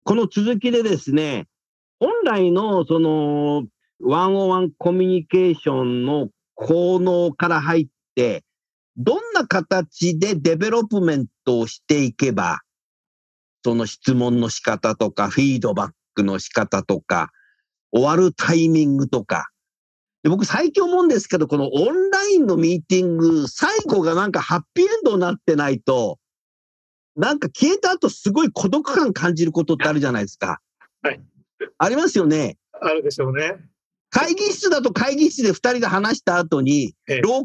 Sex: male